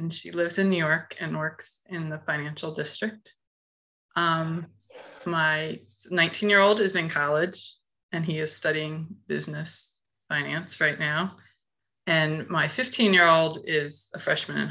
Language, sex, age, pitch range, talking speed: English, female, 20-39, 150-170 Hz, 130 wpm